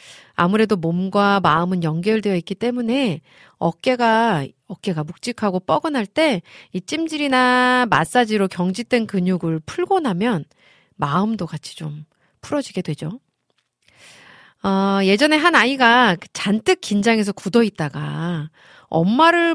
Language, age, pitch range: Korean, 40-59, 170-235 Hz